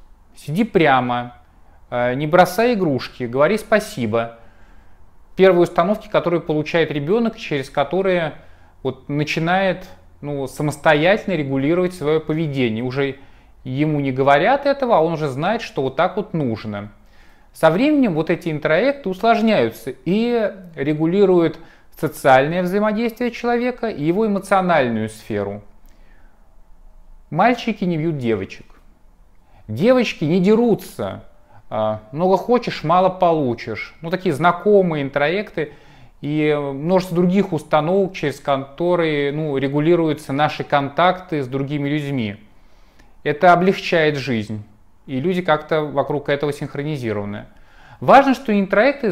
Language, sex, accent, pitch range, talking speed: Russian, male, native, 130-185 Hz, 110 wpm